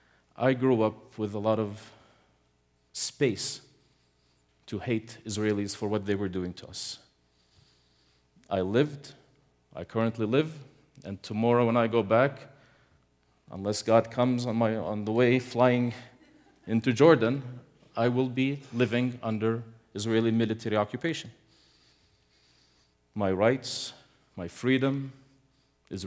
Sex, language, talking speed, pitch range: male, English, 120 wpm, 95-130 Hz